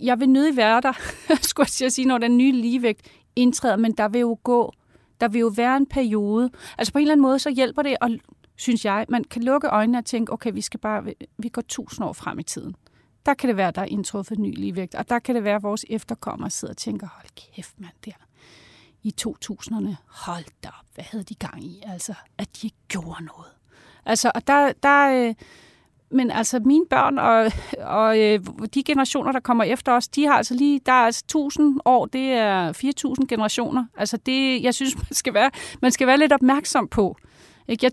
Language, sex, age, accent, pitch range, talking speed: Danish, female, 30-49, native, 210-255 Hz, 210 wpm